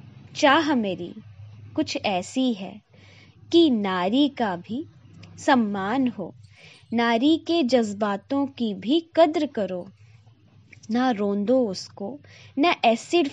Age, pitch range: 20-39, 160-265 Hz